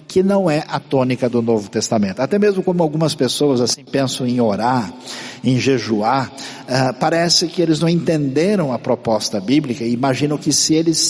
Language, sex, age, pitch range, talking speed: Portuguese, male, 60-79, 125-165 Hz, 180 wpm